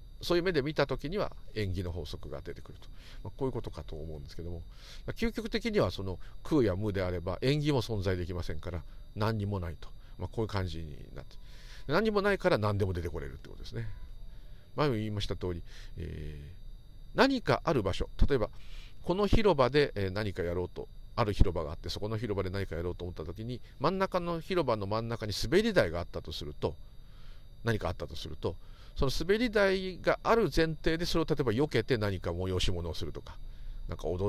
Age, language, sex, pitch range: 50-69, Japanese, male, 90-130 Hz